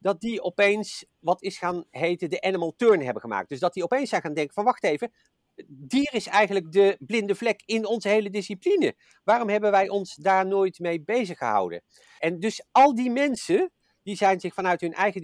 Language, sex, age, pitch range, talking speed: Dutch, male, 50-69, 150-210 Hz, 205 wpm